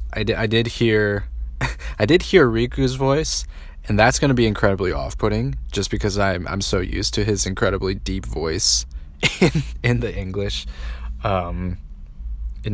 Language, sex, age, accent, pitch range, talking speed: English, male, 20-39, American, 70-105 Hz, 160 wpm